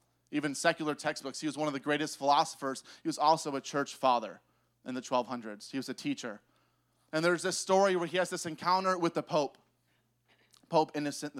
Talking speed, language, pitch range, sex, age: 195 wpm, English, 120-170 Hz, male, 20-39